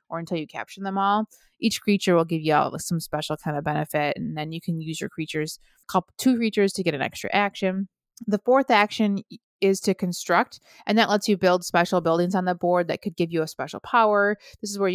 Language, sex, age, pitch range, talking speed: English, female, 30-49, 170-210 Hz, 235 wpm